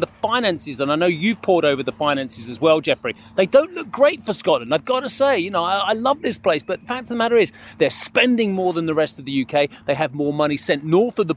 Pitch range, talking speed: 150-195 Hz, 285 wpm